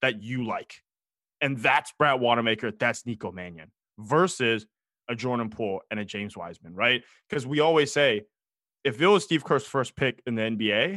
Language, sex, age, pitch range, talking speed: English, male, 20-39, 115-155 Hz, 180 wpm